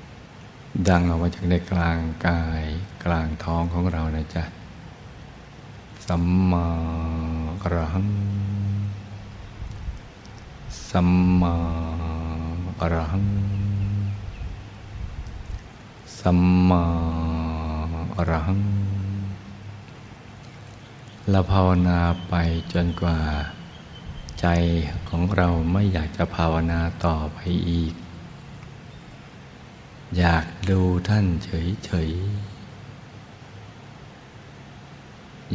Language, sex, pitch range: Thai, male, 85-100 Hz